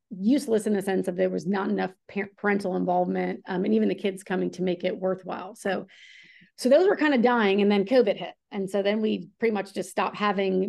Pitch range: 185-205 Hz